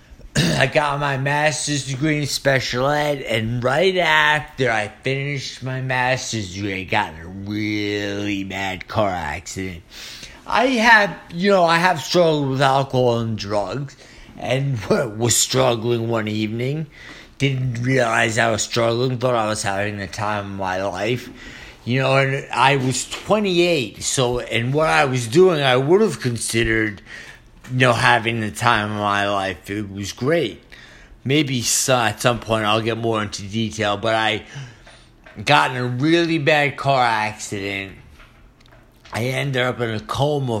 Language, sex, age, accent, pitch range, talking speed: English, male, 50-69, American, 105-140 Hz, 155 wpm